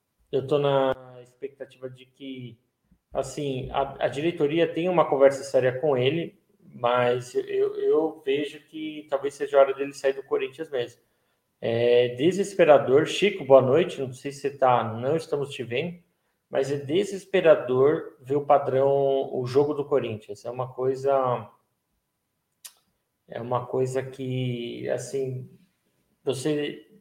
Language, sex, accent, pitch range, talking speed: Portuguese, male, Brazilian, 125-155 Hz, 135 wpm